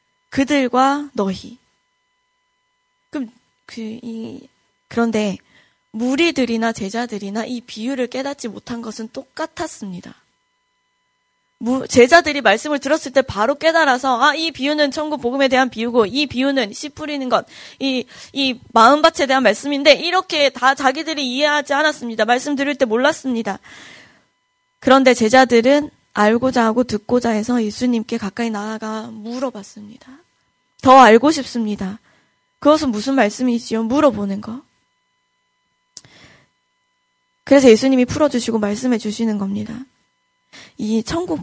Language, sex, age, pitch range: Korean, female, 20-39, 220-290 Hz